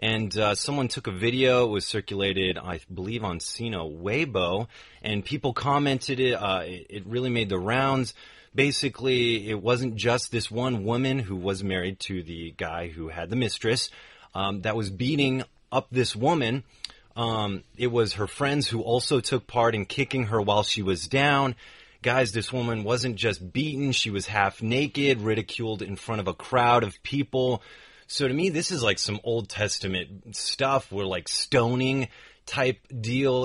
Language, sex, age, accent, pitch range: Chinese, male, 30-49, American, 105-135 Hz